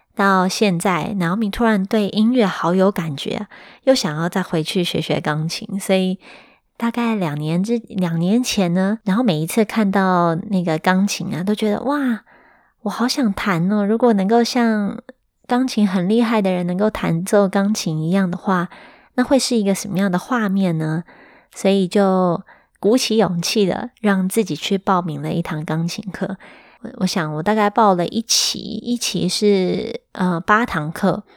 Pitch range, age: 180-220 Hz, 20-39